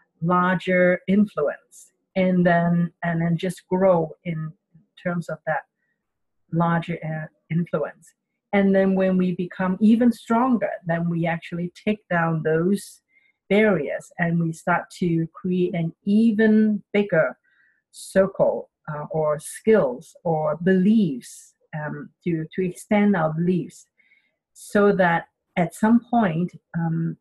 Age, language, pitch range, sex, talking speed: 50-69, English, 170-205 Hz, female, 120 wpm